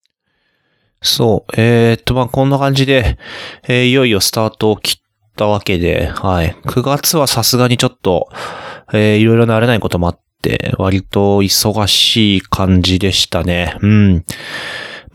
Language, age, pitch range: Japanese, 20-39, 95-130 Hz